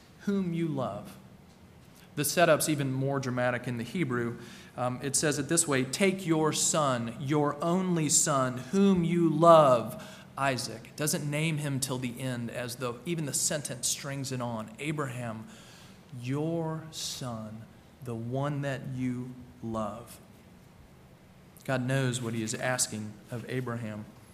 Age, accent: 40-59, American